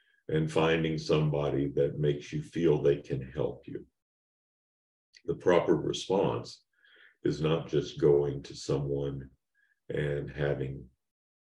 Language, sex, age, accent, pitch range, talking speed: English, male, 50-69, American, 70-80 Hz, 115 wpm